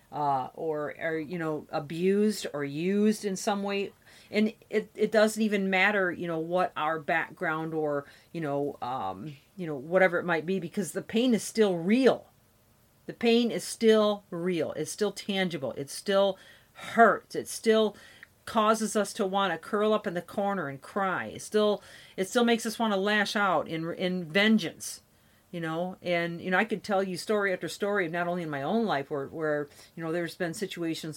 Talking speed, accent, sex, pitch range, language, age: 195 wpm, American, female, 155-205 Hz, English, 40-59